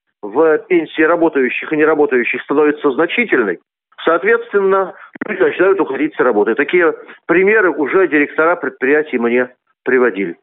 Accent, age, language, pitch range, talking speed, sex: native, 40-59, Russian, 145-200 Hz, 115 wpm, male